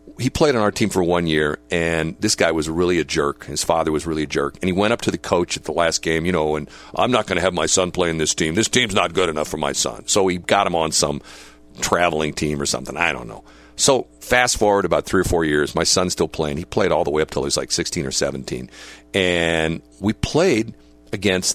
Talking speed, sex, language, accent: 265 wpm, male, English, American